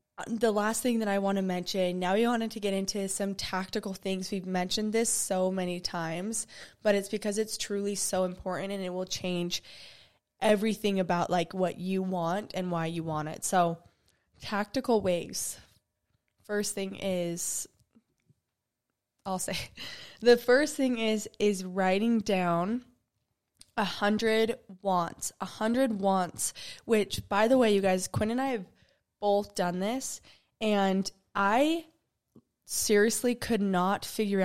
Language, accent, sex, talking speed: English, American, female, 150 wpm